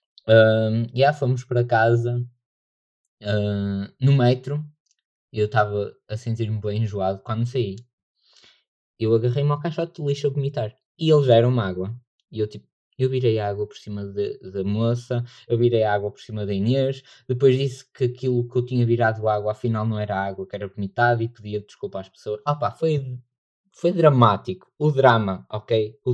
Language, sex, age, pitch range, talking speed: Portuguese, male, 20-39, 105-130 Hz, 190 wpm